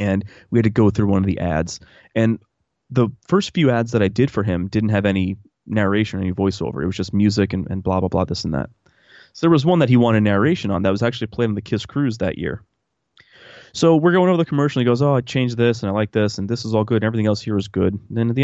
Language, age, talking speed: English, 20-39, 290 wpm